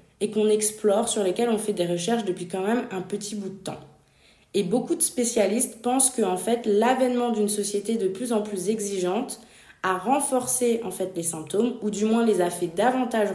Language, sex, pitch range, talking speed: French, female, 185-235 Hz, 205 wpm